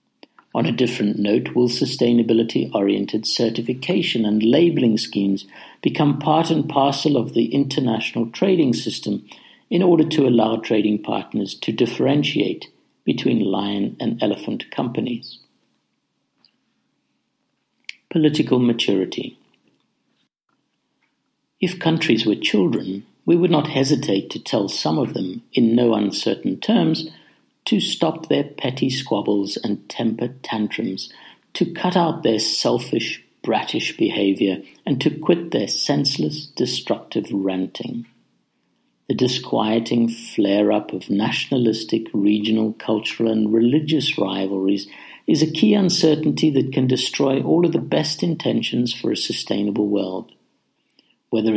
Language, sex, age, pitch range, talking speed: English, male, 60-79, 105-140 Hz, 115 wpm